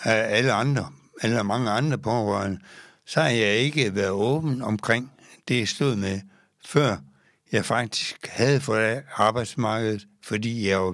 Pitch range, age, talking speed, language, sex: 100-130 Hz, 60-79, 150 wpm, Danish, male